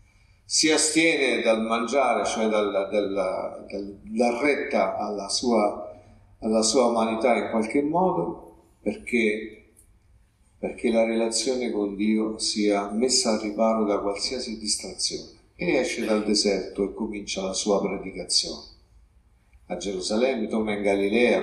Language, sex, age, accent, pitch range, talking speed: Italian, male, 50-69, native, 100-140 Hz, 130 wpm